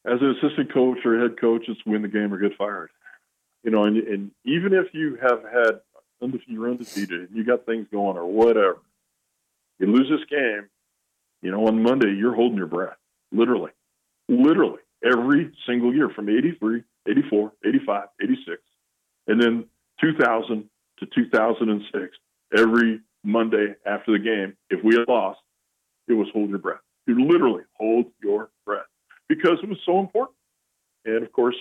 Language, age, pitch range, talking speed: English, 40-59, 105-145 Hz, 165 wpm